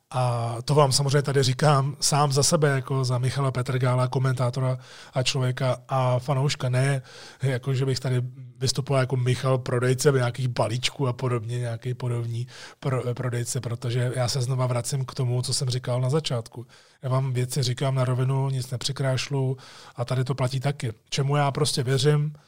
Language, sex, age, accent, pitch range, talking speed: Czech, male, 30-49, native, 125-145 Hz, 170 wpm